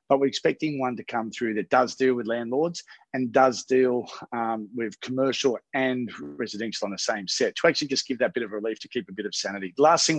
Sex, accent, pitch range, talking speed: male, Australian, 120-140 Hz, 235 wpm